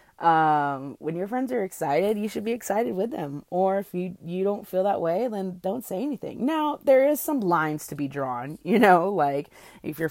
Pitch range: 150-190 Hz